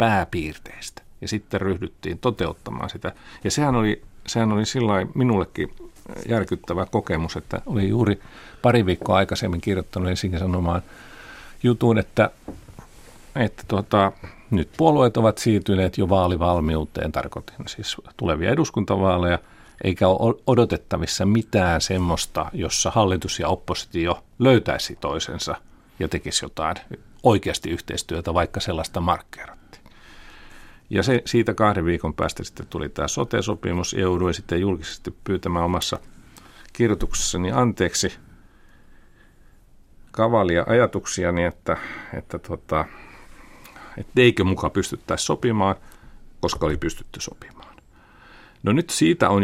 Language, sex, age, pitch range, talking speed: Finnish, male, 50-69, 90-110 Hz, 110 wpm